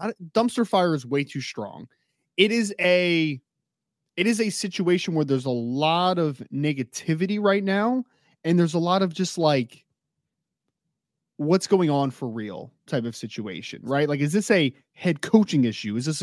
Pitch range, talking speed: 140-190 Hz, 170 wpm